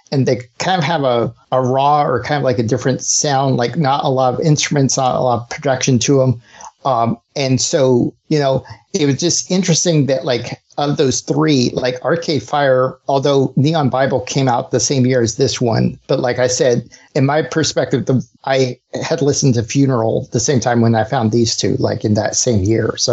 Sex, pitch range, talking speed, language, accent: male, 125-145 Hz, 215 wpm, English, American